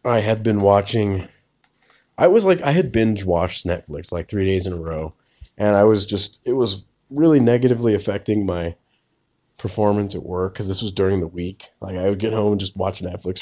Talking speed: 205 wpm